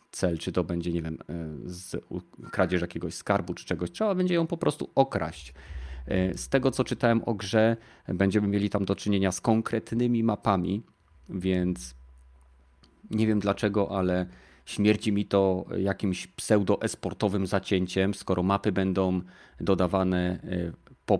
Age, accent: 30-49, native